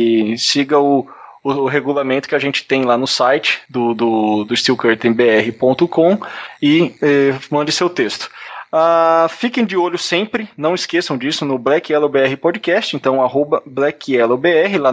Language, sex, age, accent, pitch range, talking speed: Portuguese, male, 20-39, Brazilian, 130-160 Hz, 155 wpm